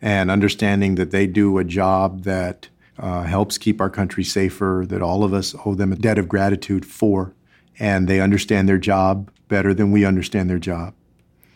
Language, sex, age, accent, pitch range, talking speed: English, male, 50-69, American, 95-110 Hz, 185 wpm